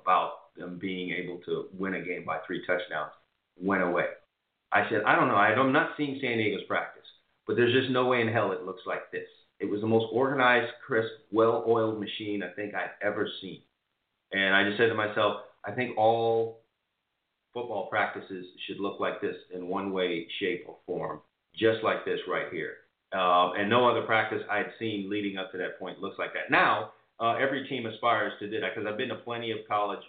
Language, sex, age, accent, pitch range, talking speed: English, male, 40-59, American, 95-120 Hz, 205 wpm